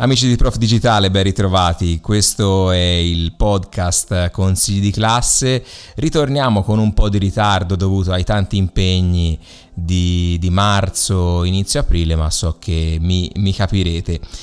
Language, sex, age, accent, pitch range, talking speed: Italian, male, 30-49, native, 90-110 Hz, 140 wpm